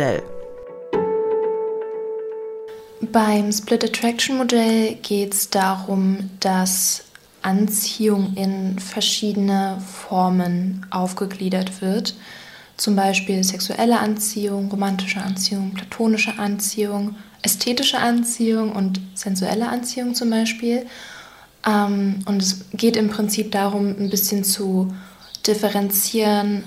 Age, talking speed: 20-39, 85 wpm